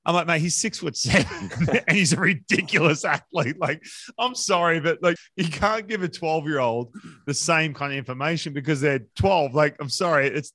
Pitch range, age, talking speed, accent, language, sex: 120-165 Hz, 30-49, 205 wpm, Australian, English, male